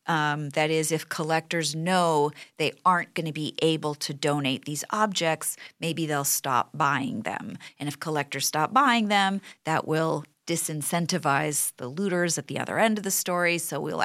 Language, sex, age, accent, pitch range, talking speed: English, female, 40-59, American, 150-185 Hz, 175 wpm